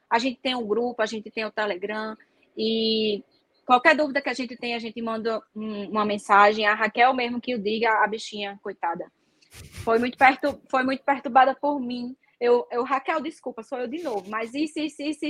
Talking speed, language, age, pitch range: 200 wpm, Portuguese, 20-39, 220-275 Hz